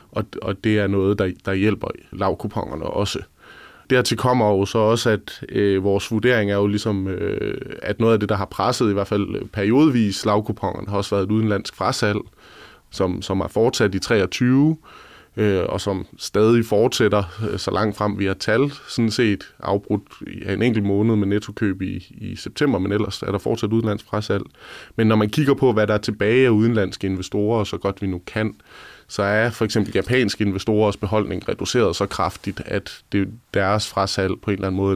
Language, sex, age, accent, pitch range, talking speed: Danish, male, 20-39, native, 95-110 Hz, 180 wpm